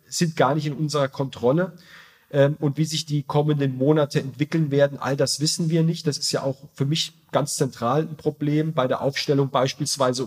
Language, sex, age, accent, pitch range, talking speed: German, male, 40-59, German, 135-160 Hz, 195 wpm